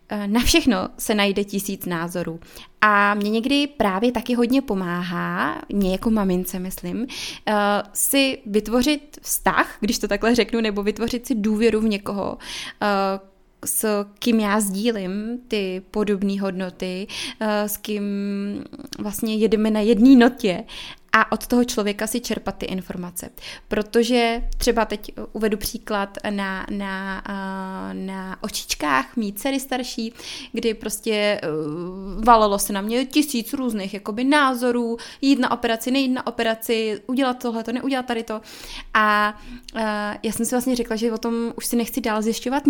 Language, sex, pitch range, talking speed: Czech, female, 200-240 Hz, 140 wpm